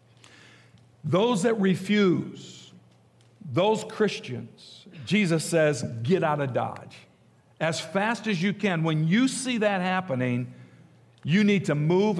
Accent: American